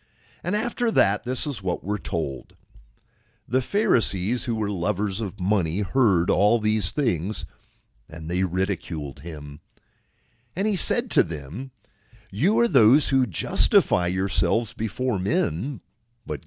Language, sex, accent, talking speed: English, male, American, 135 wpm